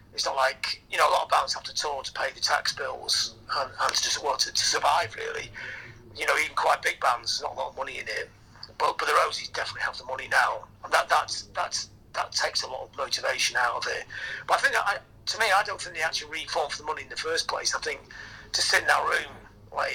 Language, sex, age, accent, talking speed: English, male, 40-59, British, 275 wpm